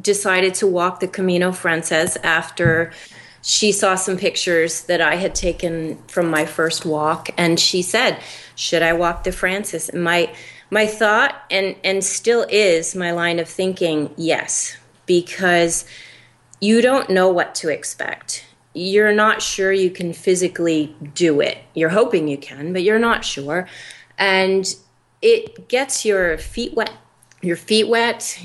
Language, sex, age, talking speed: English, female, 30-49, 150 wpm